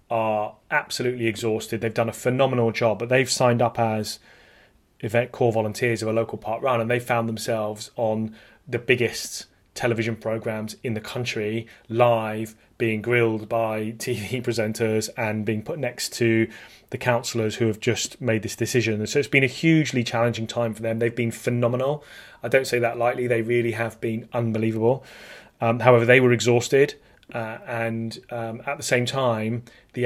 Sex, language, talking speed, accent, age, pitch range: male, English, 175 wpm, British, 30-49, 110-120 Hz